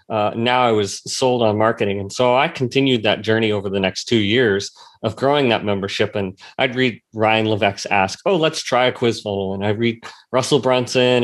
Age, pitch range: 30-49, 110-130 Hz